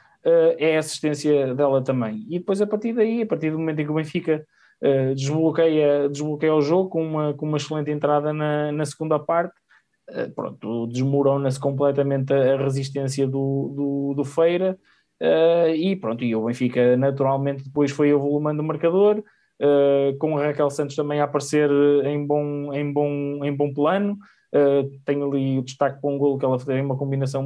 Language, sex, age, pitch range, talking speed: Portuguese, male, 20-39, 135-150 Hz, 185 wpm